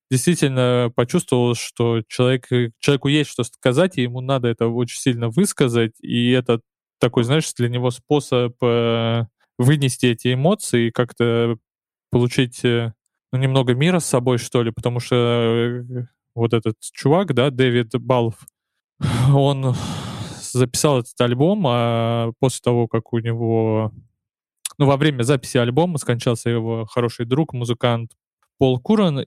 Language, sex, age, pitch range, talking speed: Russian, male, 20-39, 115-130 Hz, 135 wpm